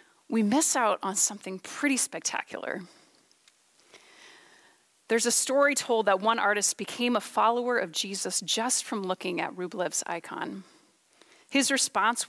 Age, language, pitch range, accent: 30-49, English, 205-265 Hz, American